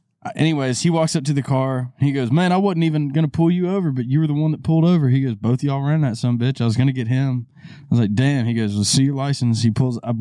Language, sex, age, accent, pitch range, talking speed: English, male, 20-39, American, 125-175 Hz, 305 wpm